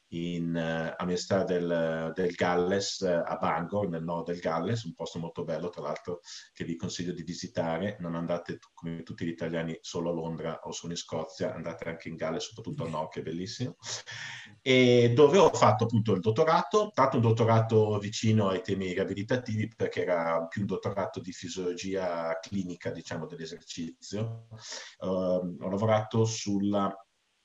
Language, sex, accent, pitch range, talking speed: Italian, male, native, 85-110 Hz, 165 wpm